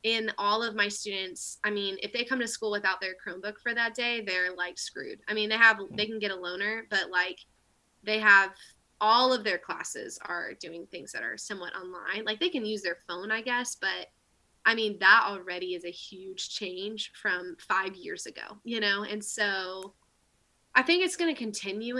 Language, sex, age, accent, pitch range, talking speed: English, female, 20-39, American, 195-250 Hz, 205 wpm